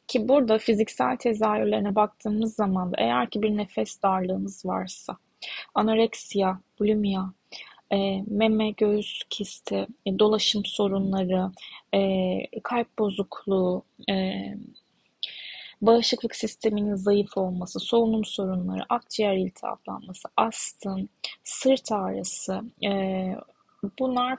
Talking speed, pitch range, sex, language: 95 wpm, 195-240 Hz, female, Turkish